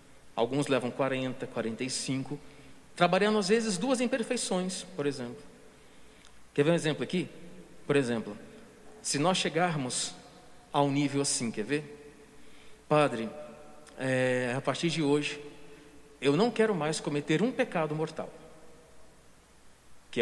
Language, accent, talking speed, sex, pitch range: Portuguese, Brazilian, 120 wpm, male, 140-210 Hz